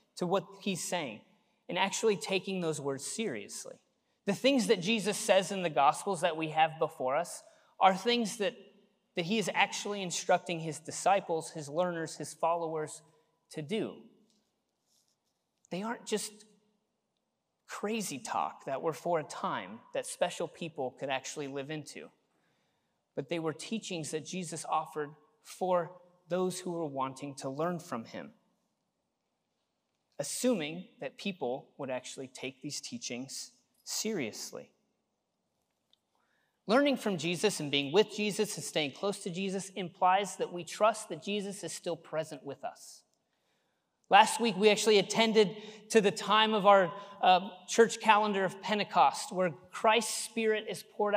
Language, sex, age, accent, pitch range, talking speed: English, male, 30-49, American, 165-215 Hz, 145 wpm